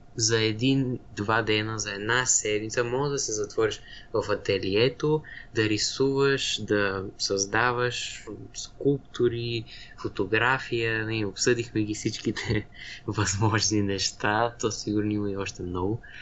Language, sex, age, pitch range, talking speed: Bulgarian, male, 20-39, 105-125 Hz, 110 wpm